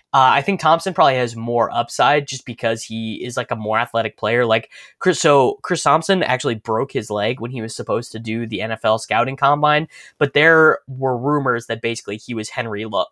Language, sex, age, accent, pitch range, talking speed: English, male, 10-29, American, 110-140 Hz, 210 wpm